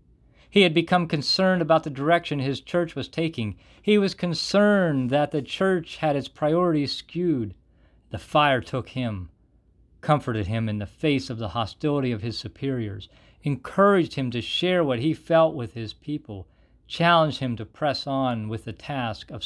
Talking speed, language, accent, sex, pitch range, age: 170 wpm, English, American, male, 110-155 Hz, 40-59